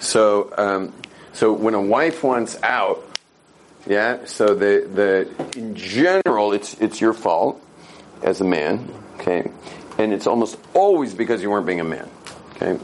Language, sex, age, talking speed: English, male, 40-59, 155 wpm